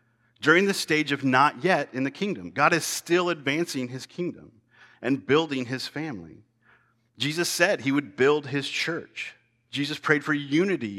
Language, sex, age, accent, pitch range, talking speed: English, male, 40-59, American, 115-145 Hz, 165 wpm